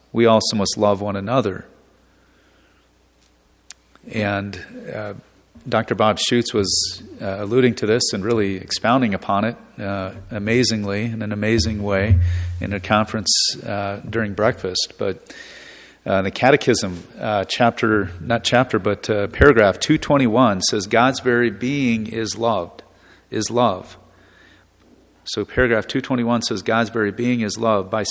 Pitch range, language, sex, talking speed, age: 100-120 Hz, English, male, 130 wpm, 40-59